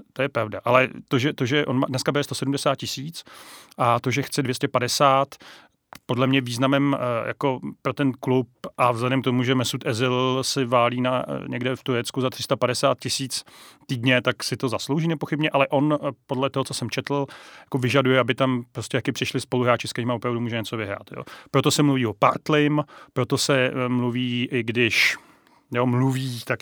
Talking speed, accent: 185 wpm, native